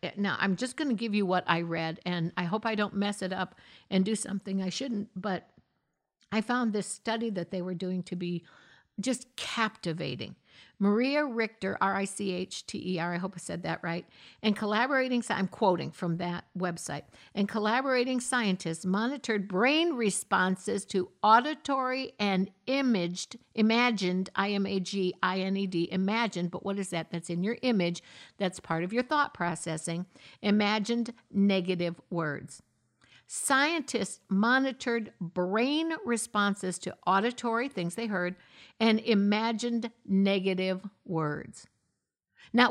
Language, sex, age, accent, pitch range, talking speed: English, female, 60-79, American, 180-230 Hz, 135 wpm